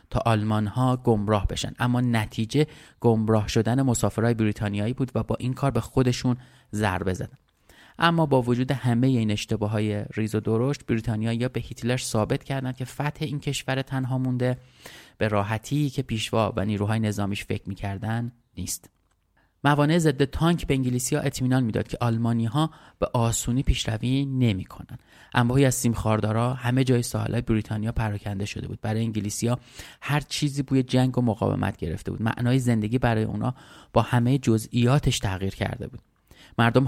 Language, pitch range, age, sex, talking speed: Persian, 110-130 Hz, 30-49, male, 160 wpm